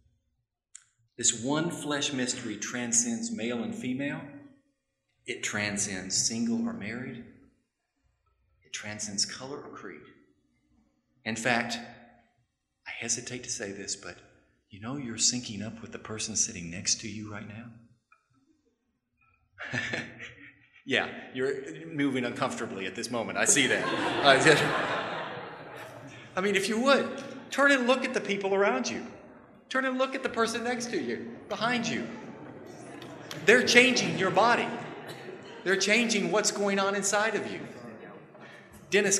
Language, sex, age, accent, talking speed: English, male, 40-59, American, 135 wpm